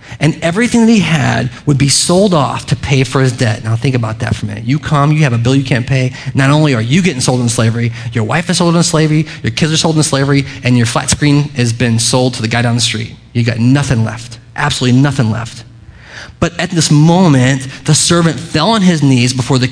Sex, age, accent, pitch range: male, 30-49, American, 115-145 Hz